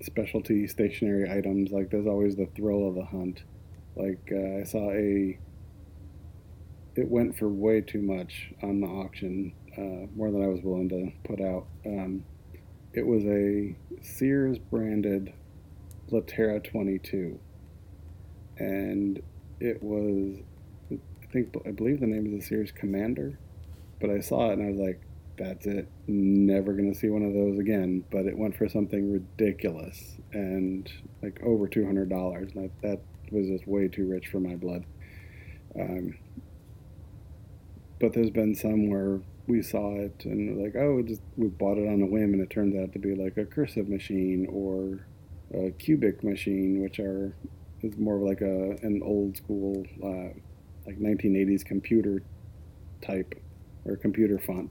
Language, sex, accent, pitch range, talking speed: English, male, American, 90-105 Hz, 160 wpm